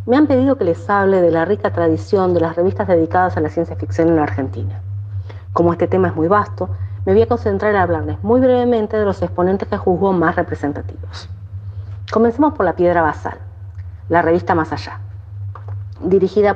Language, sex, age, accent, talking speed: Spanish, female, 40-59, American, 190 wpm